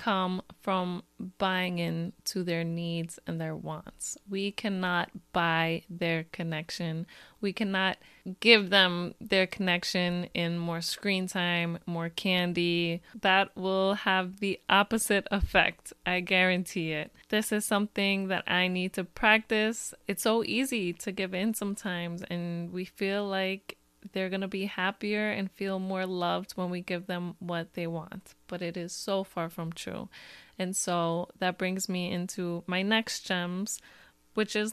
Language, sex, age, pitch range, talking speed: English, female, 20-39, 175-205 Hz, 155 wpm